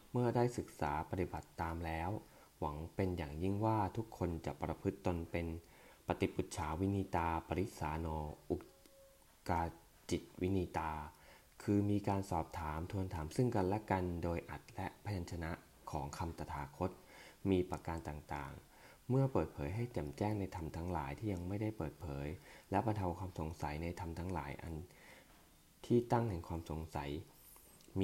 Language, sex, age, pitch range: English, male, 20-39, 80-100 Hz